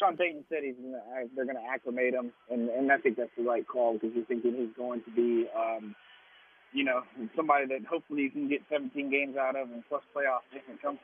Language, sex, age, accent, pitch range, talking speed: English, male, 30-49, American, 120-145 Hz, 240 wpm